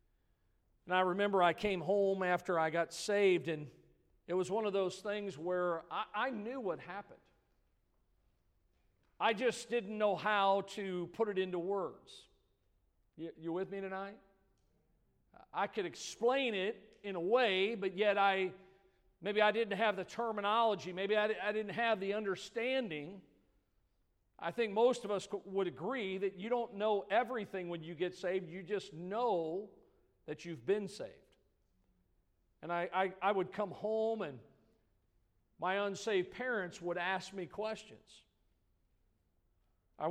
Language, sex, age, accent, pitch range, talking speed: English, male, 50-69, American, 150-205 Hz, 150 wpm